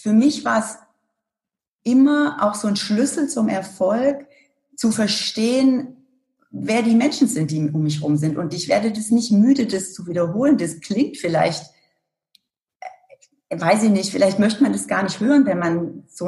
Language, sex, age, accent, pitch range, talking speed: German, female, 40-59, German, 180-250 Hz, 175 wpm